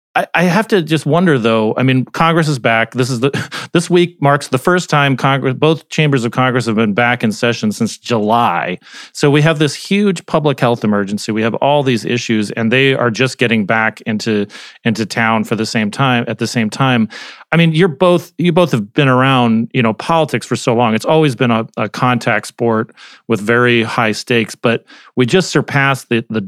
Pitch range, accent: 115-145 Hz, American